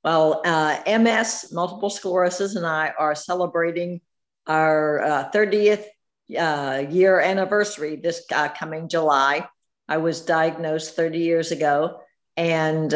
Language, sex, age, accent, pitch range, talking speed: English, female, 60-79, American, 160-195 Hz, 120 wpm